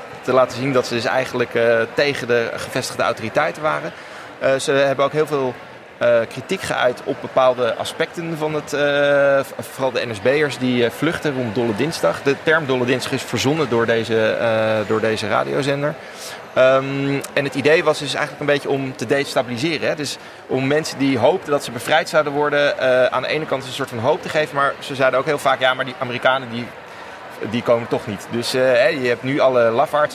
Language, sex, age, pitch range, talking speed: Dutch, male, 30-49, 120-145 Hz, 205 wpm